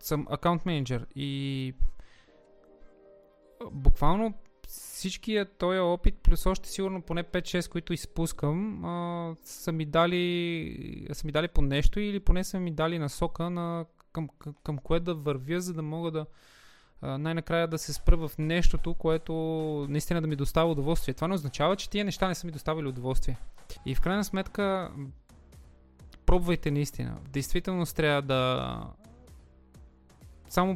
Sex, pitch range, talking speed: male, 140-175 Hz, 140 wpm